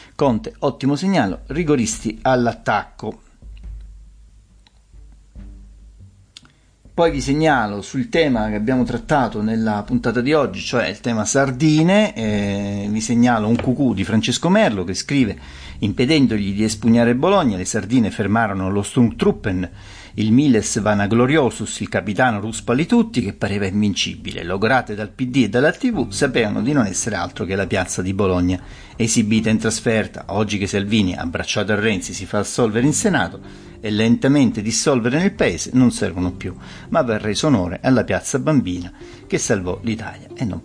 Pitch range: 100-125 Hz